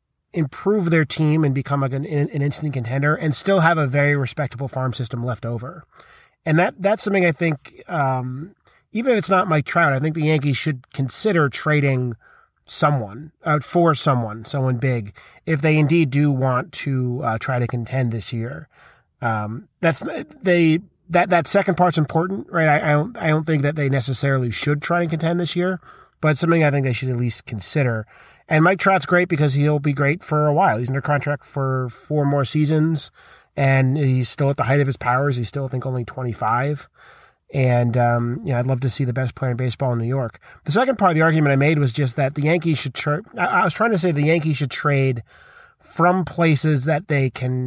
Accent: American